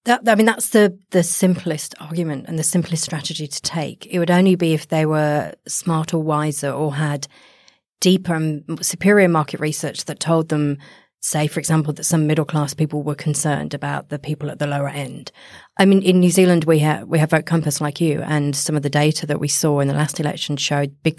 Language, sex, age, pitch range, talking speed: English, female, 30-49, 150-180 Hz, 220 wpm